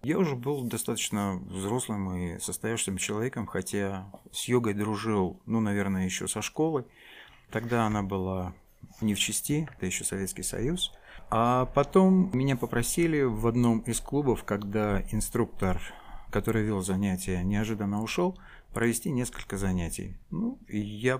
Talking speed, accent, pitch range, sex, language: 135 wpm, native, 100-120 Hz, male, Russian